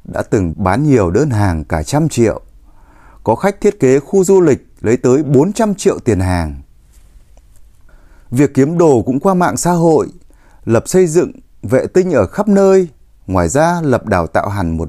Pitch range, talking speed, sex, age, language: 100-165 Hz, 185 wpm, male, 30-49, Vietnamese